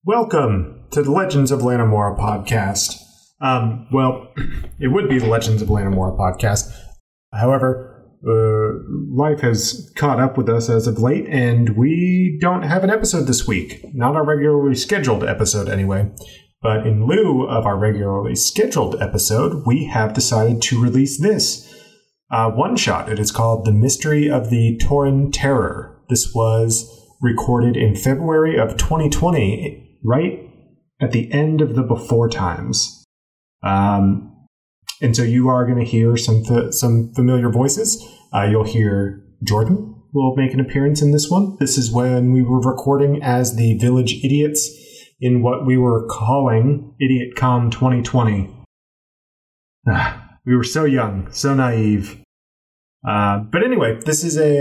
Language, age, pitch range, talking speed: English, 30-49, 110-140 Hz, 150 wpm